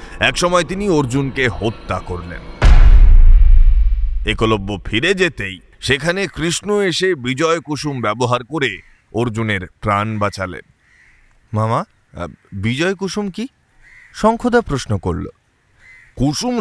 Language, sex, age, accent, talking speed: Bengali, male, 30-49, native, 85 wpm